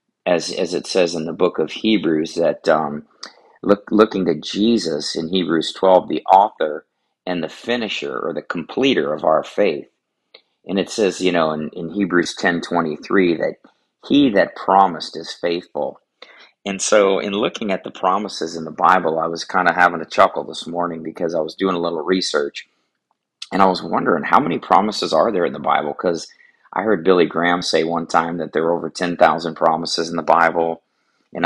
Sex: male